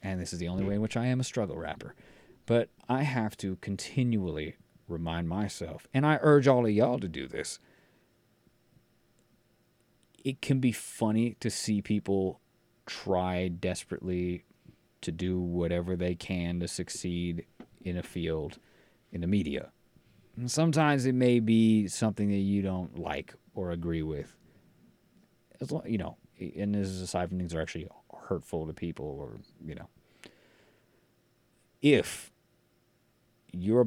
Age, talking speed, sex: 30-49, 150 wpm, male